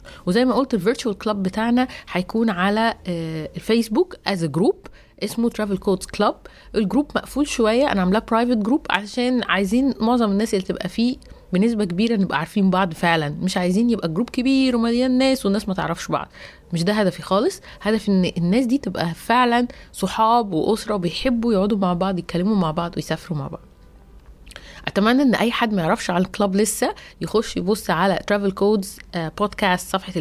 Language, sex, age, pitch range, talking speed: Arabic, female, 30-49, 180-225 Hz, 165 wpm